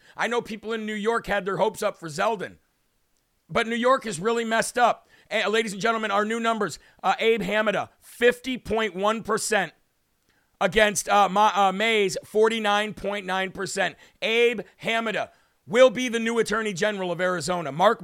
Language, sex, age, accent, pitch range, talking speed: English, male, 40-59, American, 165-215 Hz, 150 wpm